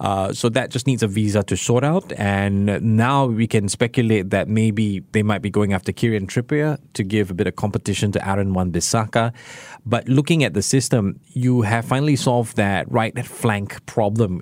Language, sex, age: English, male, 20-39